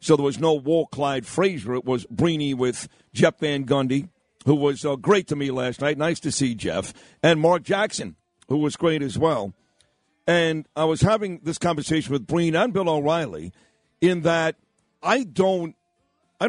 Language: English